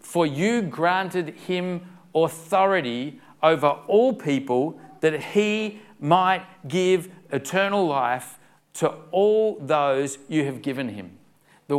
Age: 40-59